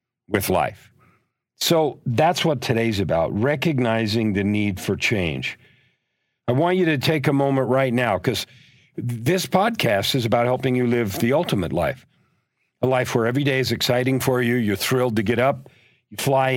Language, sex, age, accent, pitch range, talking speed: English, male, 50-69, American, 105-130 Hz, 175 wpm